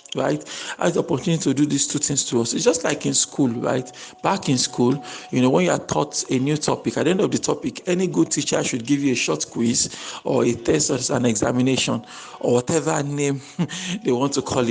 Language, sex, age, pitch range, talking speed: English, male, 50-69, 130-170 Hz, 235 wpm